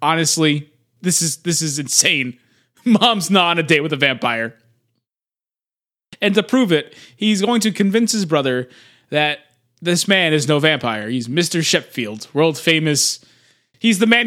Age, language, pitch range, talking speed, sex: 20-39, English, 140-200 Hz, 160 wpm, male